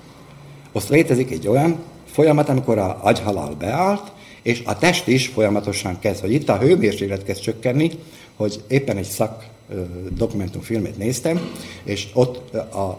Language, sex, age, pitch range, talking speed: Slovak, male, 60-79, 100-135 Hz, 145 wpm